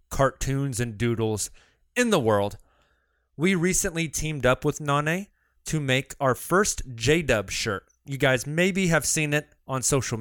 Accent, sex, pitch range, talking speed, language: American, male, 110-145 Hz, 155 wpm, English